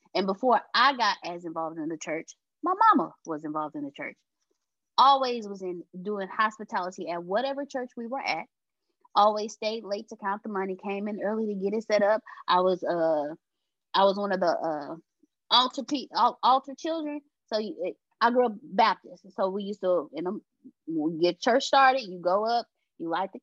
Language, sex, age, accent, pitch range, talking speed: English, female, 20-39, American, 185-255 Hz, 185 wpm